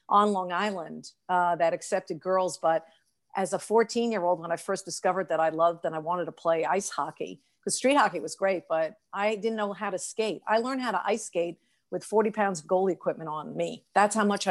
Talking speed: 225 wpm